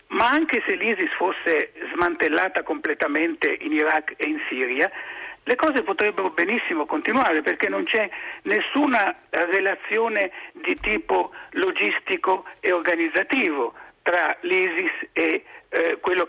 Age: 60-79